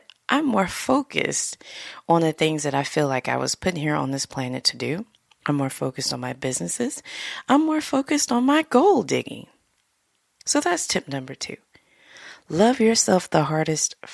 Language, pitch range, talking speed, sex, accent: English, 140-190 Hz, 175 wpm, female, American